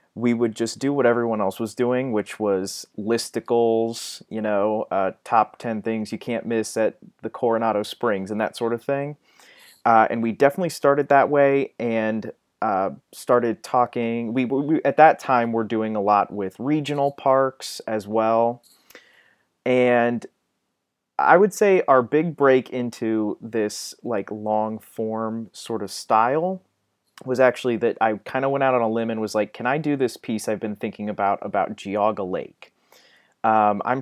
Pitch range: 110-135 Hz